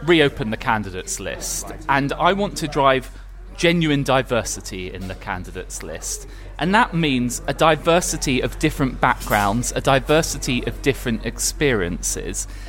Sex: male